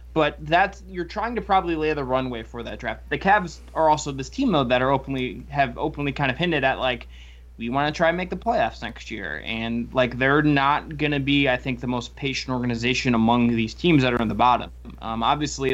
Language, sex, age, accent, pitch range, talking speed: English, male, 20-39, American, 120-150 Hz, 245 wpm